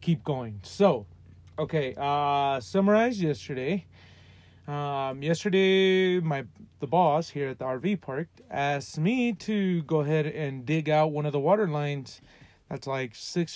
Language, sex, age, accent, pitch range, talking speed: English, male, 30-49, American, 130-170 Hz, 145 wpm